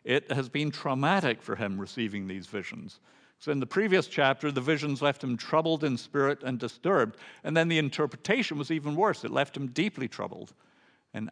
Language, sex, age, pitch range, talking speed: English, male, 50-69, 110-155 Hz, 190 wpm